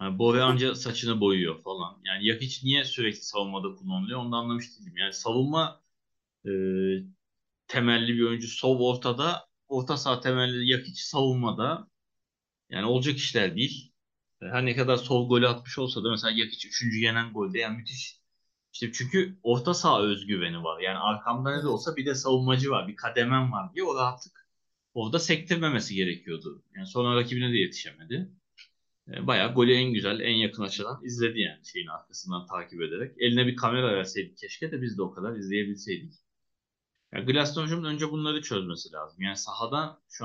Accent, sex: native, male